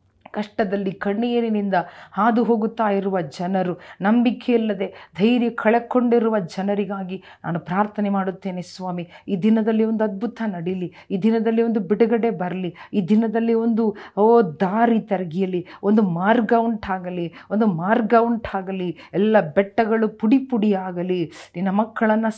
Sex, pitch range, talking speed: female, 170-215 Hz, 110 wpm